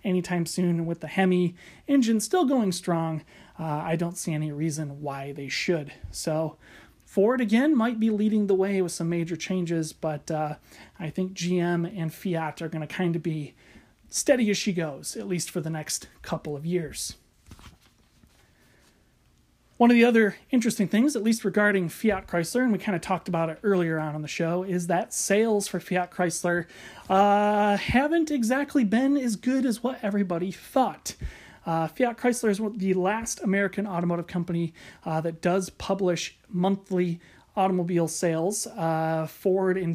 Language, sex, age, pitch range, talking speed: English, male, 30-49, 165-210 Hz, 170 wpm